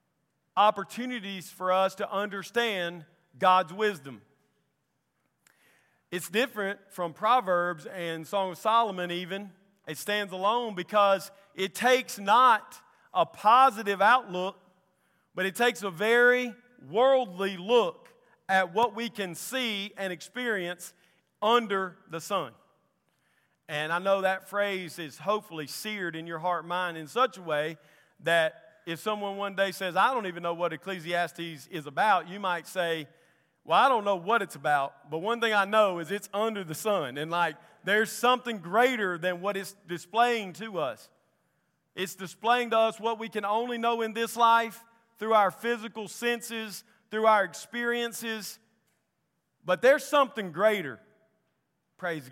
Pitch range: 175-225 Hz